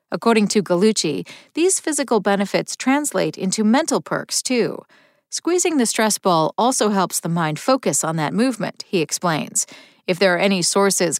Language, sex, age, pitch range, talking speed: English, female, 40-59, 180-265 Hz, 160 wpm